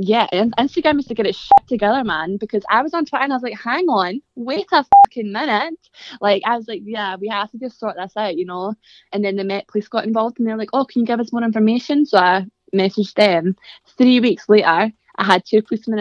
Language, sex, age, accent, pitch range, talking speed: English, female, 10-29, British, 195-240 Hz, 245 wpm